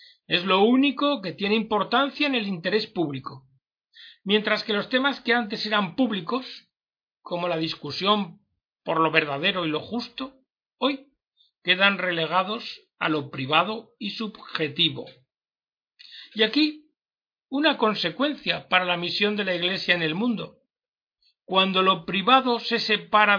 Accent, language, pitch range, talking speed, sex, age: Spanish, Spanish, 170-235 Hz, 135 wpm, male, 60-79